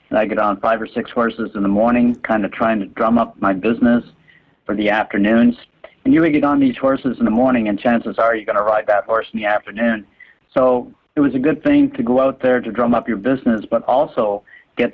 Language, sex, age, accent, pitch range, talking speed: English, male, 50-69, American, 110-125 Hz, 245 wpm